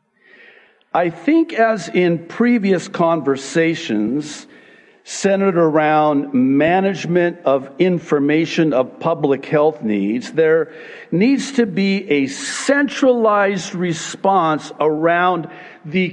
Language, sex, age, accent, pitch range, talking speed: English, male, 60-79, American, 145-200 Hz, 90 wpm